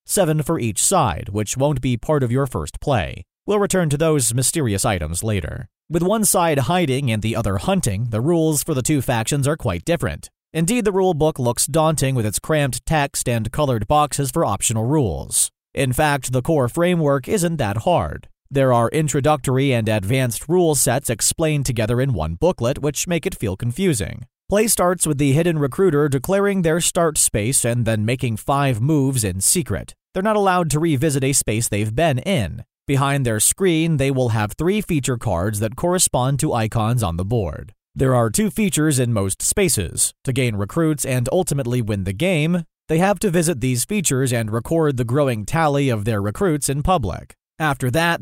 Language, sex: English, male